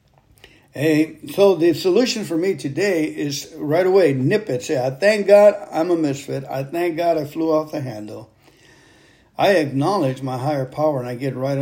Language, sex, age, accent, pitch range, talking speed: English, male, 60-79, American, 130-165 Hz, 185 wpm